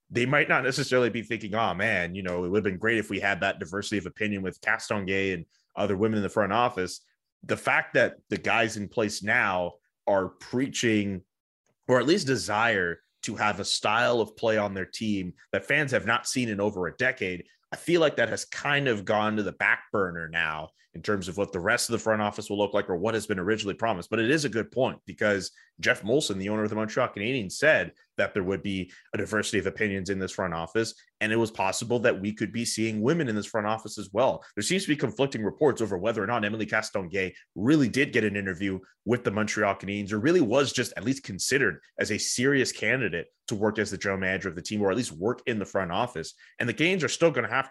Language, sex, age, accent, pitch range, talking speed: English, male, 30-49, American, 100-120 Hz, 245 wpm